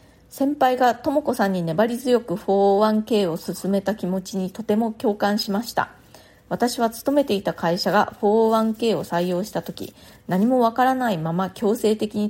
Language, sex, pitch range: Japanese, female, 180-235 Hz